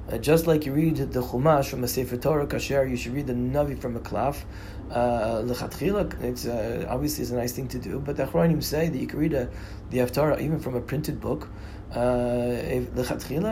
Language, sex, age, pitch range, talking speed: English, male, 30-49, 120-150 Hz, 210 wpm